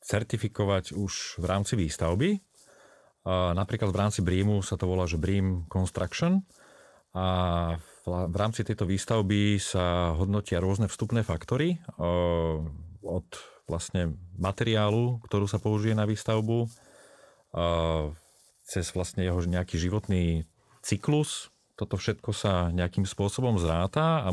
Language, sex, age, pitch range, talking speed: Slovak, male, 40-59, 90-110 Hz, 115 wpm